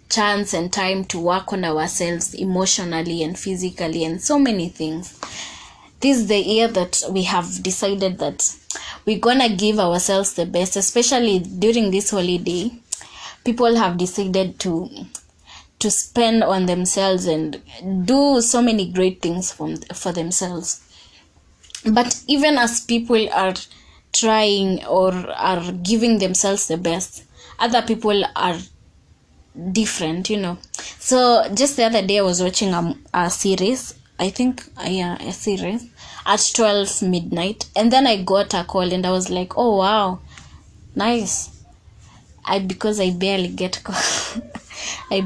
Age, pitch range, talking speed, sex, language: 20-39, 180-230 Hz, 140 wpm, female, English